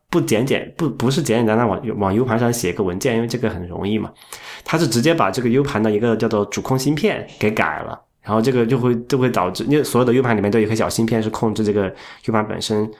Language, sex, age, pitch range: Chinese, male, 20-39, 105-125 Hz